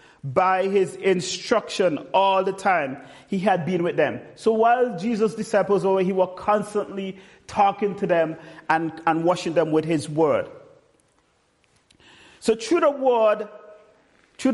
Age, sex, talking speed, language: 40-59, male, 140 wpm, English